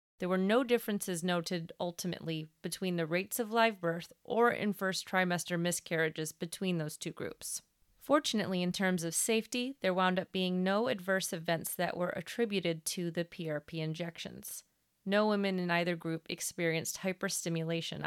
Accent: American